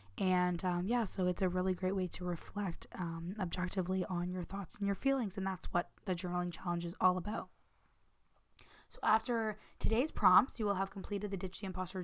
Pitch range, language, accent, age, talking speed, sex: 180-205 Hz, English, American, 20-39, 200 wpm, female